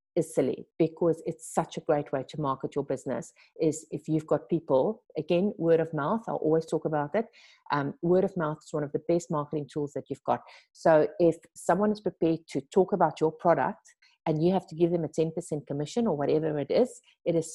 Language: English